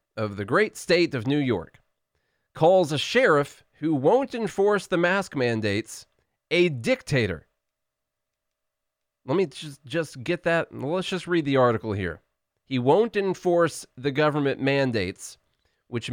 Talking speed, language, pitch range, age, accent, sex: 140 wpm, English, 115-165 Hz, 30-49, American, male